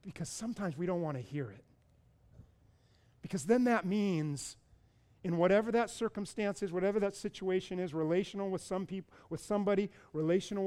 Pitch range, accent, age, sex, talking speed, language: 150-190 Hz, American, 40-59, male, 155 wpm, English